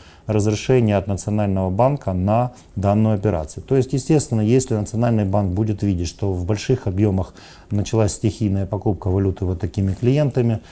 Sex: male